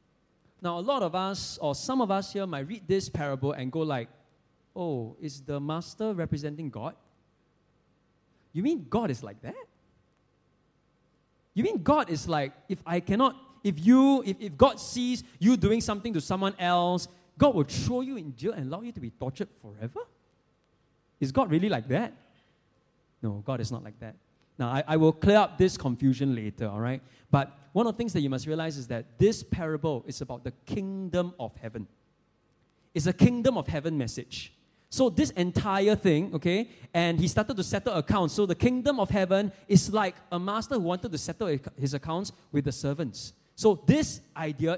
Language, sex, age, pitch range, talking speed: English, male, 20-39, 135-195 Hz, 190 wpm